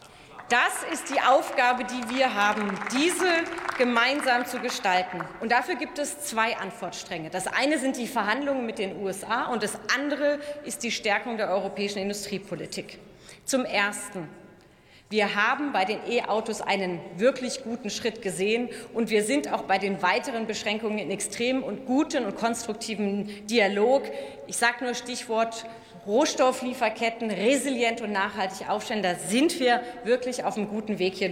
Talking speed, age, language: 155 wpm, 30-49, German